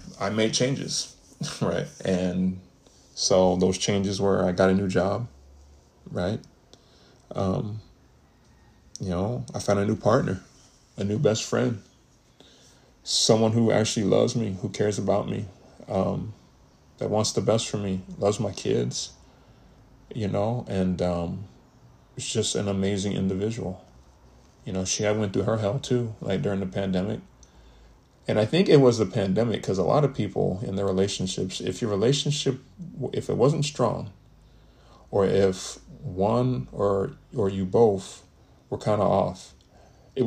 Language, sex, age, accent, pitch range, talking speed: English, male, 20-39, American, 95-110 Hz, 150 wpm